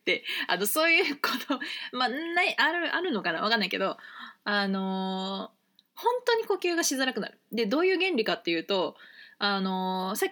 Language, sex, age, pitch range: Japanese, female, 20-39, 200-335 Hz